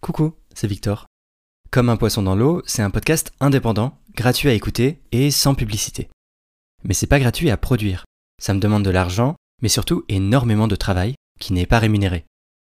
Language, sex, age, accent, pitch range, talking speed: French, male, 20-39, French, 95-125 Hz, 180 wpm